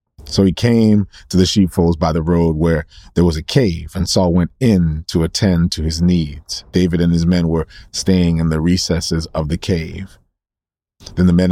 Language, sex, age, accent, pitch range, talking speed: English, male, 40-59, American, 85-95 Hz, 200 wpm